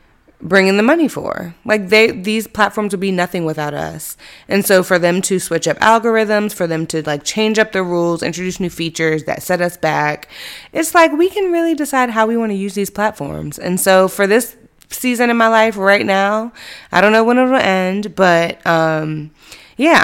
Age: 20-39